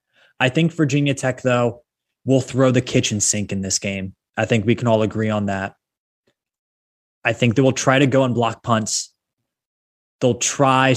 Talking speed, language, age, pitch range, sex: 180 wpm, English, 20-39, 105-130 Hz, male